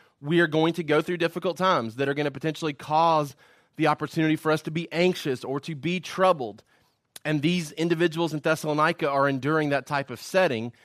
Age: 30-49